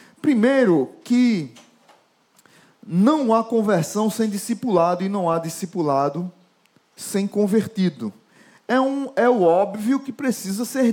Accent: Brazilian